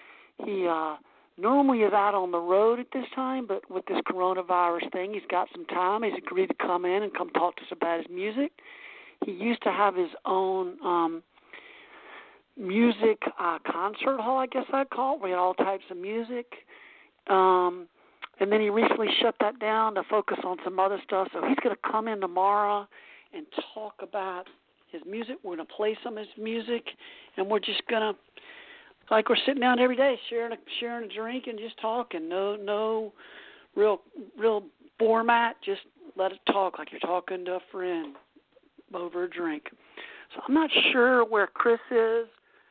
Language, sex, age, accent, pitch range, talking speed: English, male, 60-79, American, 185-260 Hz, 190 wpm